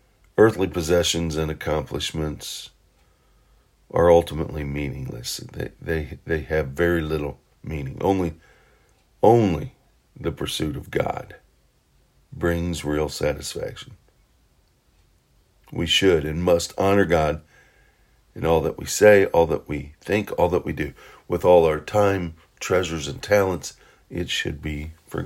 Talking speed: 125 wpm